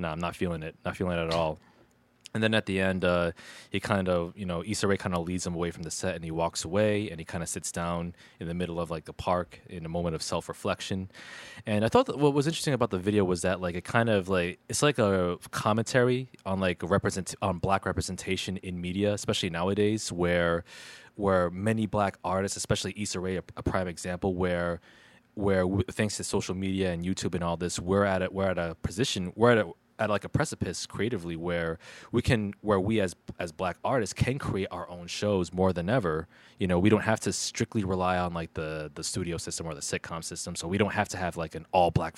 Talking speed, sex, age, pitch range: 240 wpm, male, 20-39, 85-105 Hz